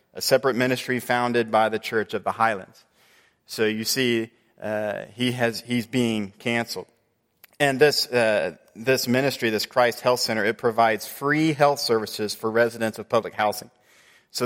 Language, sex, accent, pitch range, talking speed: English, male, American, 110-130 Hz, 160 wpm